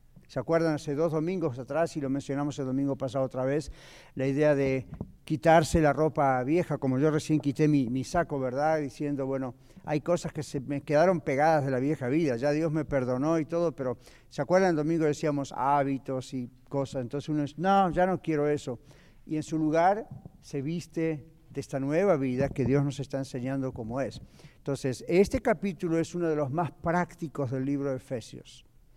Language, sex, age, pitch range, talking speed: Spanish, male, 50-69, 135-170 Hz, 195 wpm